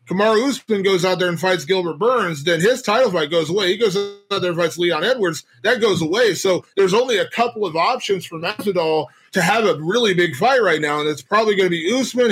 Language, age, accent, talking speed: English, 20-39, American, 245 wpm